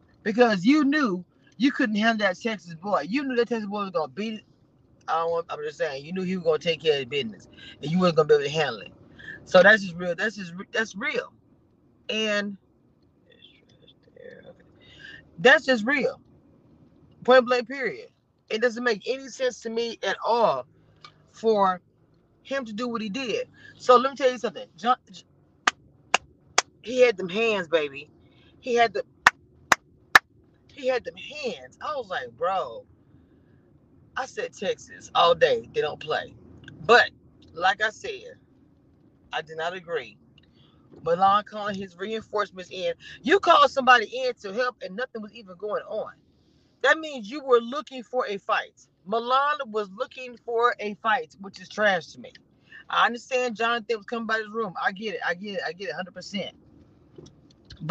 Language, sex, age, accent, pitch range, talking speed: English, female, 30-49, American, 200-265 Hz, 175 wpm